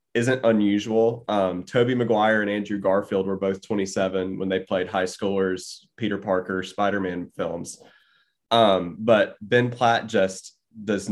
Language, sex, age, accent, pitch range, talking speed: English, male, 20-39, American, 95-110 Hz, 140 wpm